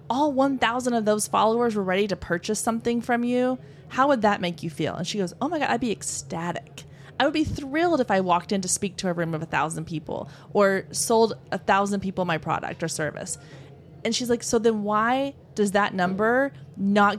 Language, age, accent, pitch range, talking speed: English, 20-39, American, 170-230 Hz, 220 wpm